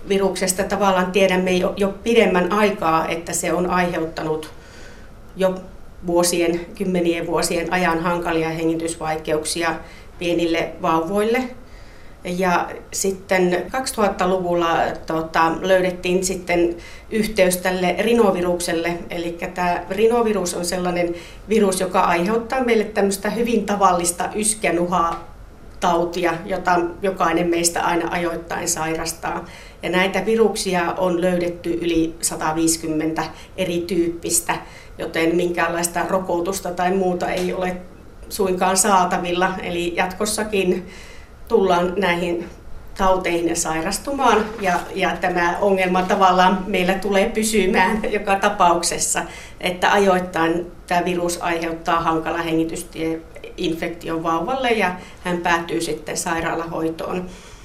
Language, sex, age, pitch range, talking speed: Finnish, female, 40-59, 170-190 Hz, 100 wpm